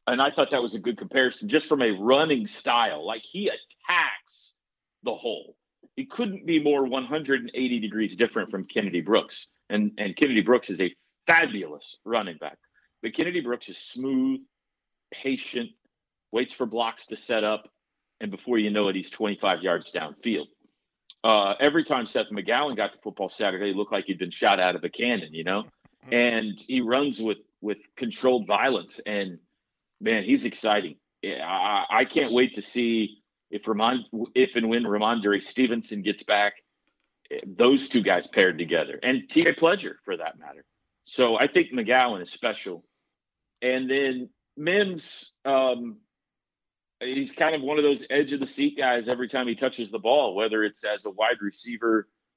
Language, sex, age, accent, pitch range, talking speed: English, male, 40-59, American, 105-145 Hz, 170 wpm